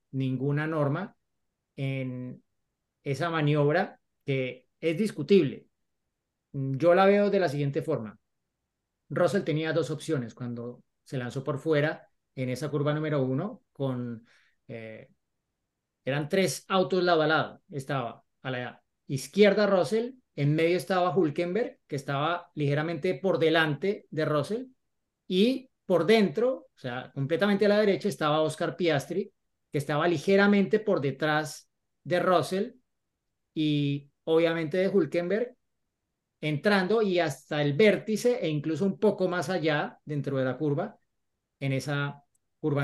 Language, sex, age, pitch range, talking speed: Spanish, male, 30-49, 145-195 Hz, 130 wpm